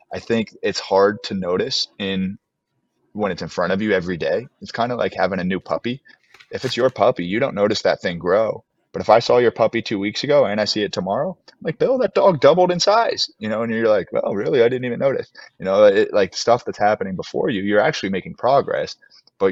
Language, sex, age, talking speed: English, male, 20-39, 245 wpm